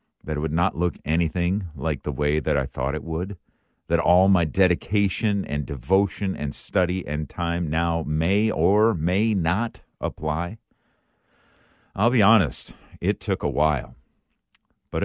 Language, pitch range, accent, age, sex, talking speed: English, 70-95 Hz, American, 50-69, male, 150 wpm